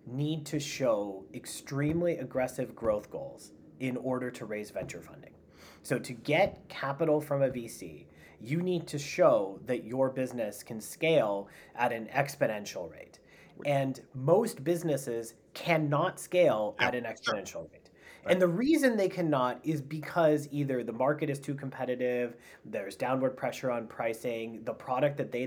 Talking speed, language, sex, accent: 150 wpm, English, male, American